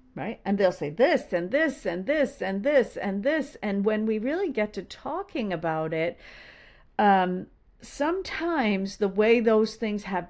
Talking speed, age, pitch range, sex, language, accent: 170 wpm, 50-69, 185-260 Hz, female, English, American